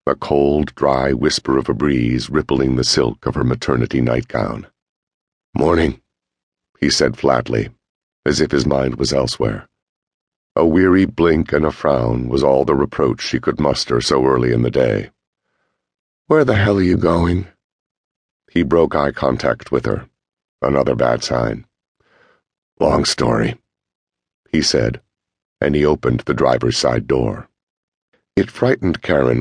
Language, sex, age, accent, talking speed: English, male, 60-79, American, 145 wpm